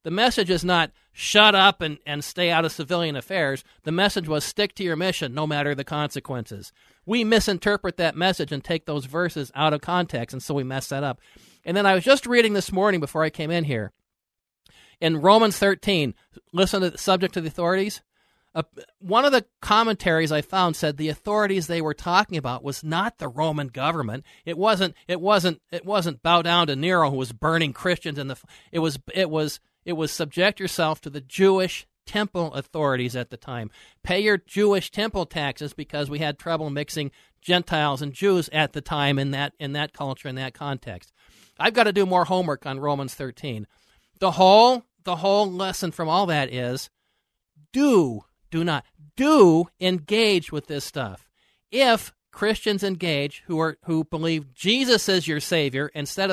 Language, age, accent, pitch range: English, 50-69, American, 145-190 Hz